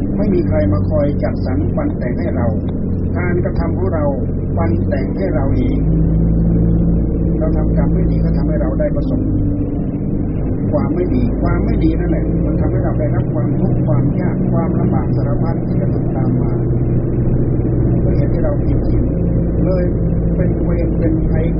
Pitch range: 65-100 Hz